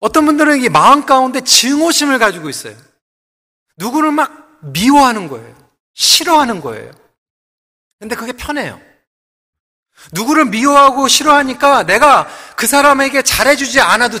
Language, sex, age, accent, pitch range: Korean, male, 40-59, native, 175-275 Hz